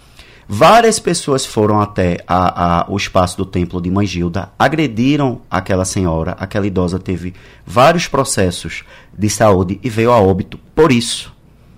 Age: 20-39